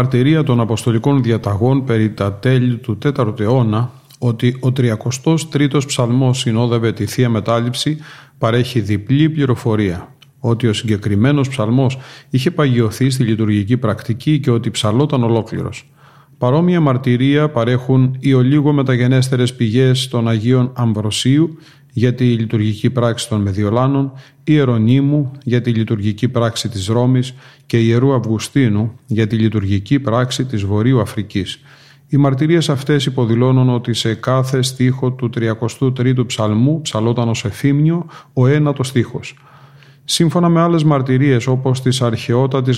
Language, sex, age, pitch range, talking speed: Greek, male, 40-59, 115-140 Hz, 130 wpm